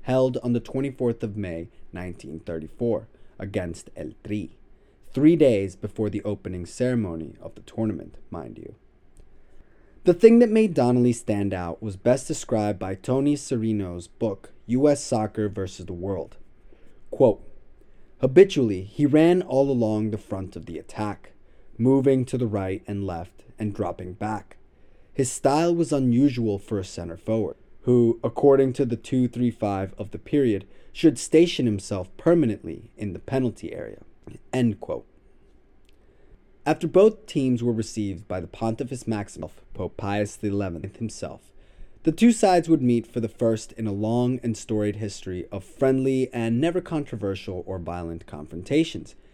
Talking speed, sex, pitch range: 145 wpm, male, 100-130 Hz